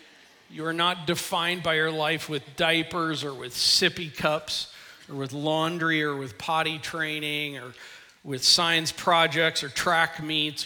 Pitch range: 145-165 Hz